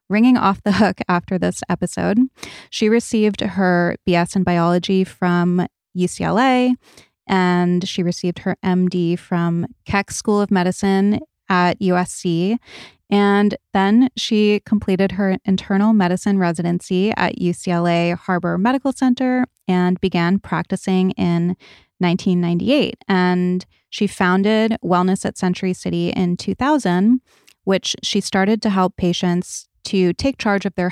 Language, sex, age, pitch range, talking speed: English, female, 20-39, 180-210 Hz, 125 wpm